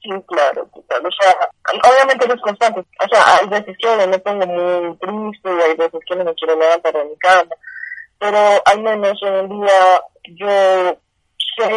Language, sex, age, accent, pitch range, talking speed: Spanish, female, 20-39, Indian, 180-210 Hz, 185 wpm